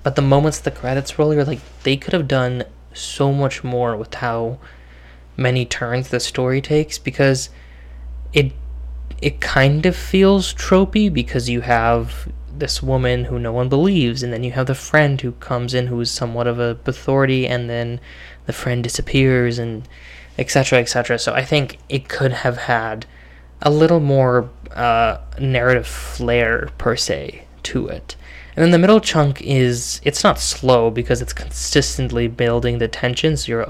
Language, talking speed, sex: English, 175 wpm, male